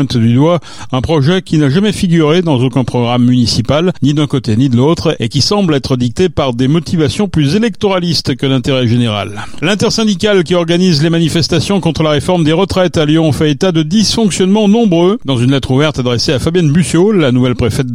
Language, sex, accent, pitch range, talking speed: French, male, French, 125-170 Hz, 195 wpm